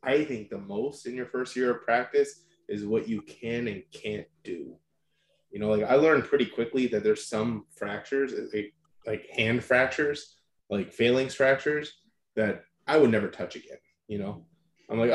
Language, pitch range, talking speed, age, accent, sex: English, 105-135 Hz, 175 wpm, 20-39, American, male